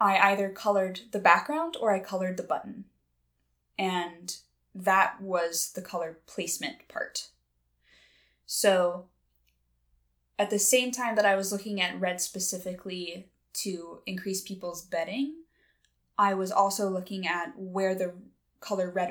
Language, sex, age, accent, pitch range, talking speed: English, female, 10-29, American, 170-205 Hz, 130 wpm